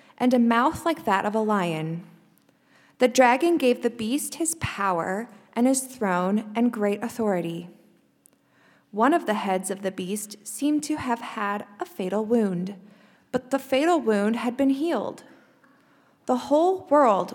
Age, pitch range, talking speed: 20-39, 195-250 Hz, 155 wpm